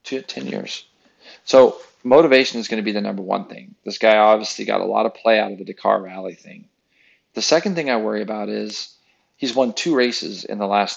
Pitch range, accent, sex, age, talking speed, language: 105-125 Hz, American, male, 40-59, 225 wpm, English